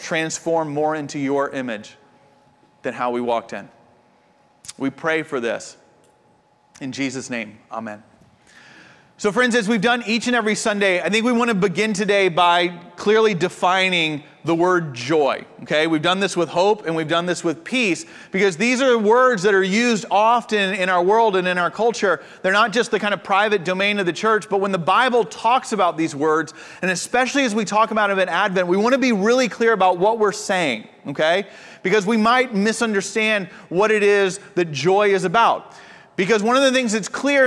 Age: 30-49